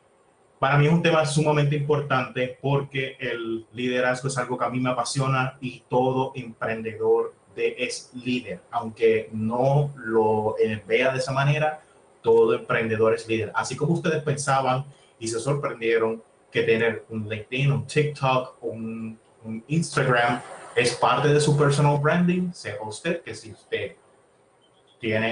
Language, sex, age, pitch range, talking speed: Spanish, male, 30-49, 110-145 Hz, 145 wpm